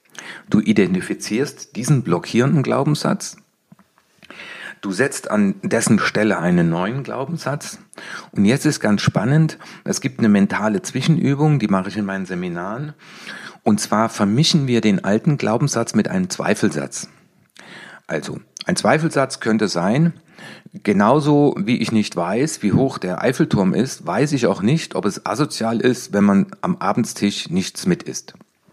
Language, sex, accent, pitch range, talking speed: German, male, German, 105-175 Hz, 145 wpm